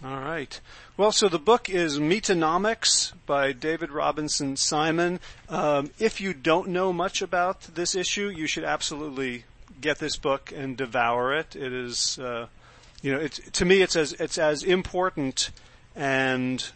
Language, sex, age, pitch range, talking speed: English, male, 40-59, 125-160 Hz, 160 wpm